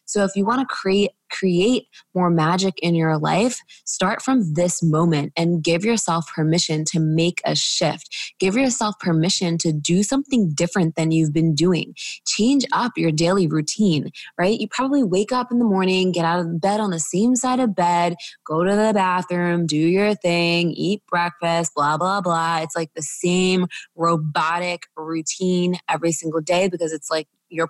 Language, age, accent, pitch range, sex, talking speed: English, 20-39, American, 160-195 Hz, female, 180 wpm